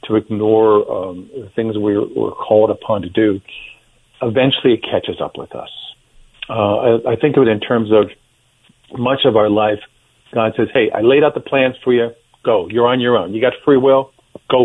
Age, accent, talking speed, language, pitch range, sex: 50-69, American, 205 wpm, English, 110-160 Hz, male